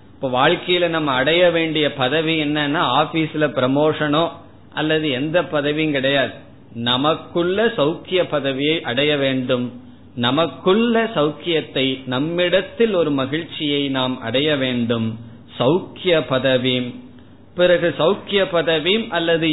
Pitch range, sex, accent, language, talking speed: 130-165 Hz, male, native, Tamil, 95 wpm